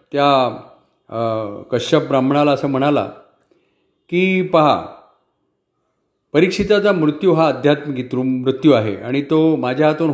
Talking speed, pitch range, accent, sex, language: 85 wpm, 135-170 Hz, native, male, Marathi